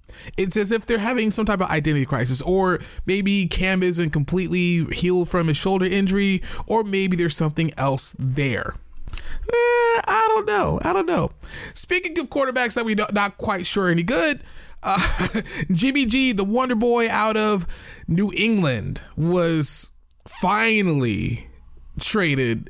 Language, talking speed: English, 150 wpm